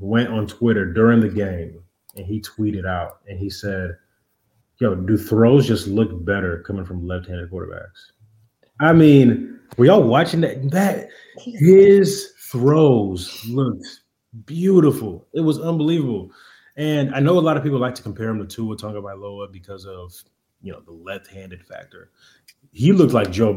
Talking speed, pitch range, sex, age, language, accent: 160 wpm, 105-130 Hz, male, 30-49, English, American